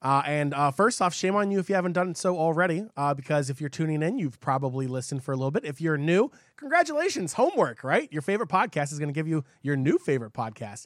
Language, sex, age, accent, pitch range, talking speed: English, male, 30-49, American, 150-210 Hz, 250 wpm